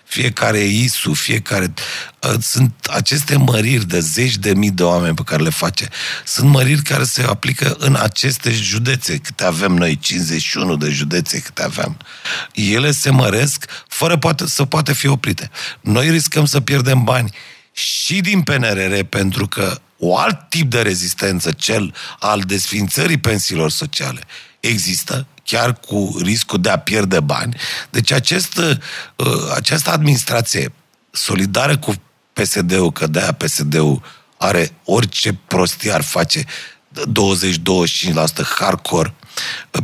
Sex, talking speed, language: male, 125 wpm, Romanian